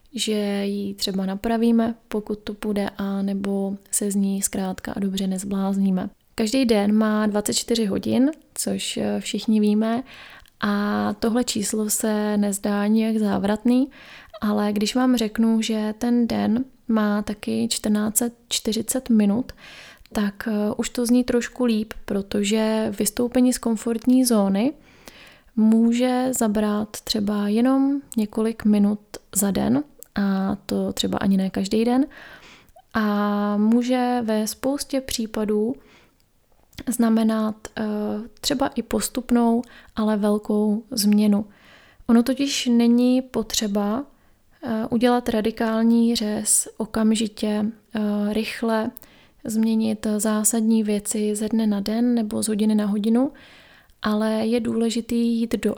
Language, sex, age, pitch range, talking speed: Czech, female, 20-39, 210-235 Hz, 115 wpm